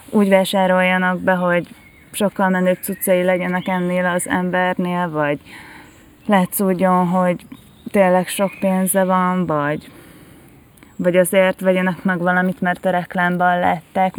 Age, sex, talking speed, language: 20-39, female, 120 wpm, Hungarian